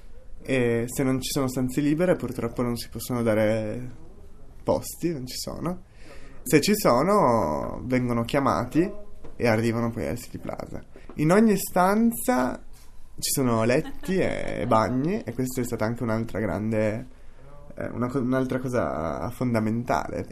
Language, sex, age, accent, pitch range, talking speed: Italian, male, 20-39, native, 115-145 Hz, 135 wpm